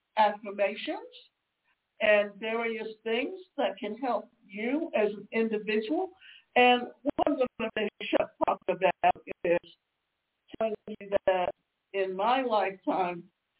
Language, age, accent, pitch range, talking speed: English, 60-79, American, 205-250 Hz, 120 wpm